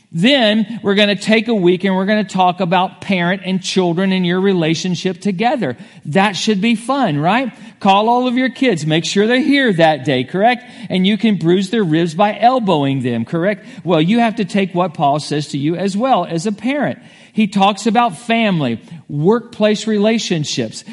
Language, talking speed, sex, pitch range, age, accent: English, 195 wpm, male, 170-220 Hz, 50-69, American